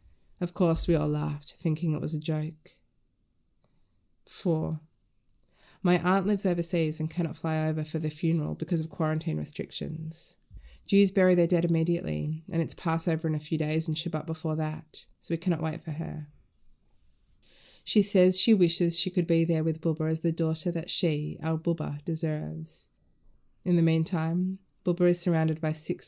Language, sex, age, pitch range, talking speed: English, female, 20-39, 155-170 Hz, 170 wpm